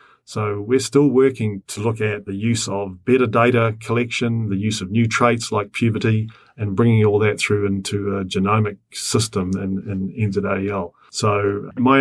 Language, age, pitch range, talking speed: English, 30-49, 100-120 Hz, 175 wpm